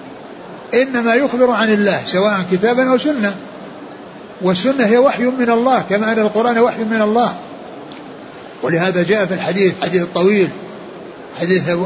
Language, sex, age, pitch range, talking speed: Arabic, male, 60-79, 175-215 Hz, 130 wpm